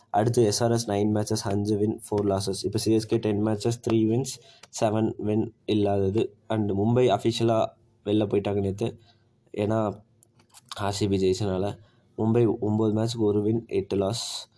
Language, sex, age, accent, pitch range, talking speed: Tamil, male, 20-39, native, 105-125 Hz, 135 wpm